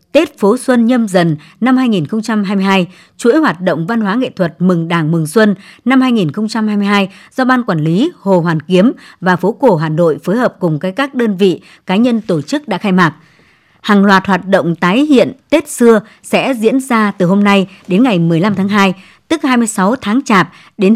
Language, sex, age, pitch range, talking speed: Vietnamese, male, 60-79, 180-240 Hz, 200 wpm